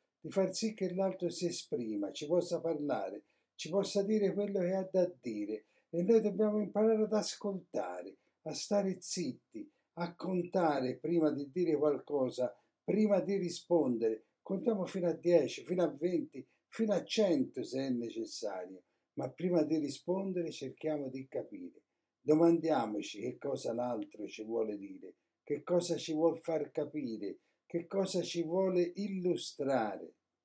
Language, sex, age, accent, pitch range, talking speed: Italian, male, 60-79, native, 155-195 Hz, 145 wpm